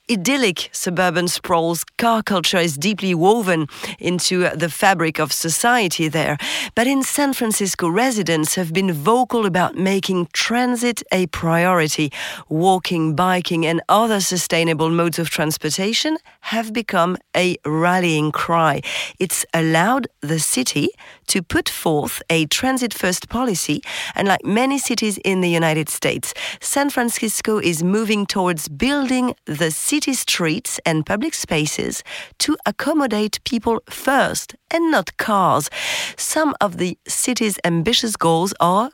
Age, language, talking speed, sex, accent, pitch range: 40-59, French, 135 wpm, female, French, 165-230 Hz